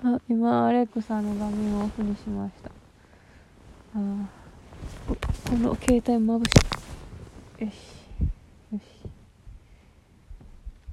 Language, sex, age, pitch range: Japanese, female, 20-39, 190-215 Hz